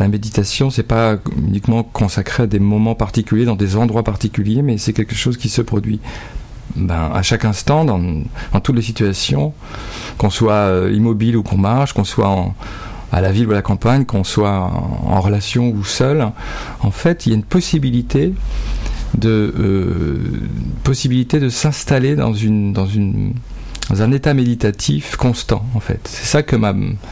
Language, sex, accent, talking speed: French, male, French, 175 wpm